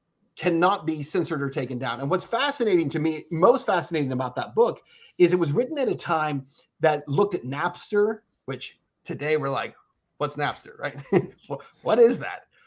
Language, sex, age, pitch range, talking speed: English, male, 30-49, 150-190 Hz, 175 wpm